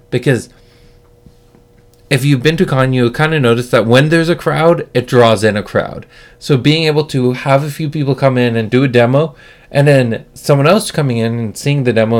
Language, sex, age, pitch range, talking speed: English, male, 20-39, 115-145 Hz, 215 wpm